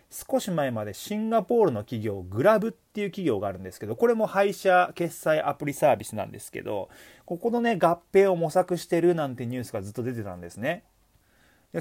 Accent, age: native, 30-49